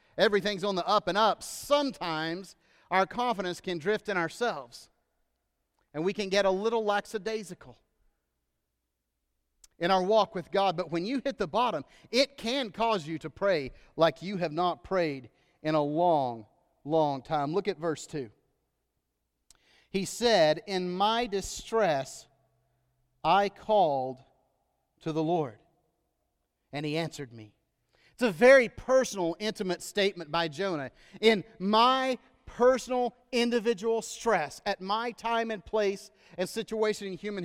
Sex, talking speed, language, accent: male, 140 wpm, English, American